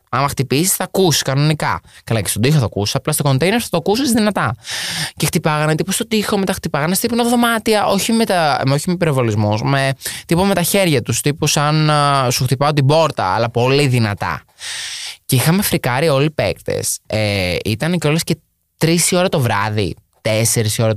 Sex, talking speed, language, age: male, 180 wpm, Greek, 20-39